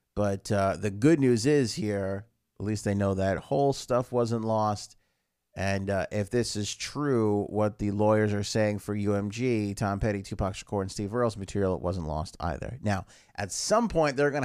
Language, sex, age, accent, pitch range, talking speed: English, male, 30-49, American, 95-115 Hz, 195 wpm